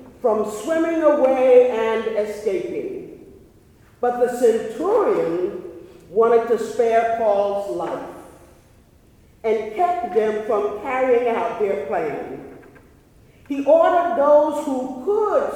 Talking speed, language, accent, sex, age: 100 wpm, English, American, female, 50-69